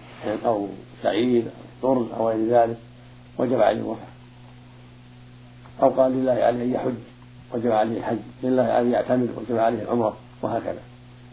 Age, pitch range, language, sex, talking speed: 60-79, 115-125 Hz, Arabic, male, 150 wpm